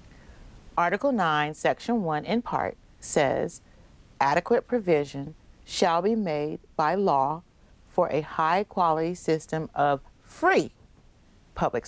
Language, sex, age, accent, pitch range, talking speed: English, female, 40-59, American, 160-195 Hz, 105 wpm